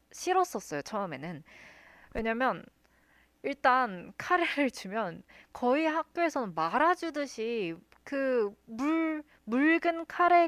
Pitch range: 190-285 Hz